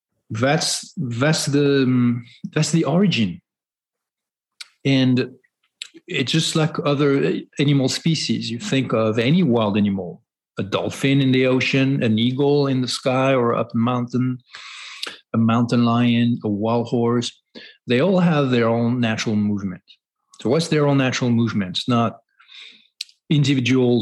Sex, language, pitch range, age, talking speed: male, English, 110-135 Hz, 40-59, 135 wpm